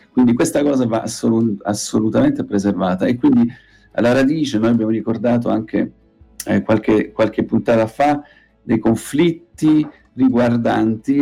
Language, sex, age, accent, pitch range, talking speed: Italian, male, 40-59, native, 100-120 Hz, 120 wpm